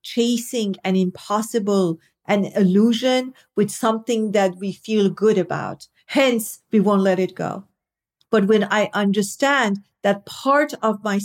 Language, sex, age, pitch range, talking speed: English, female, 50-69, 190-235 Hz, 140 wpm